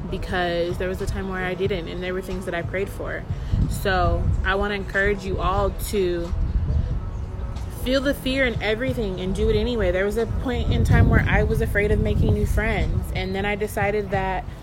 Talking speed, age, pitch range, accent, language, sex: 210 wpm, 20-39, 185-230 Hz, American, English, female